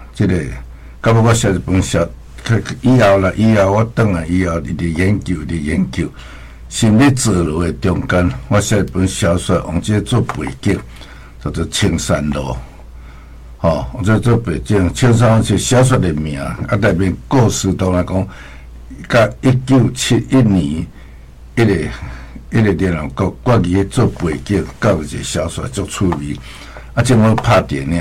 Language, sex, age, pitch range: Chinese, male, 60-79, 75-115 Hz